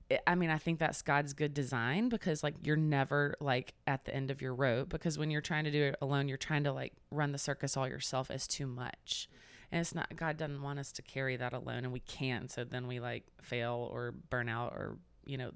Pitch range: 130-155 Hz